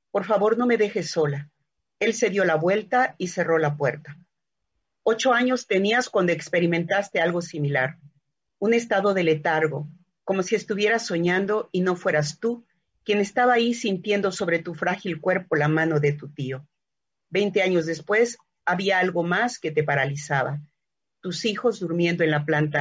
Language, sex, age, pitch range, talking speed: Spanish, female, 40-59, 155-205 Hz, 165 wpm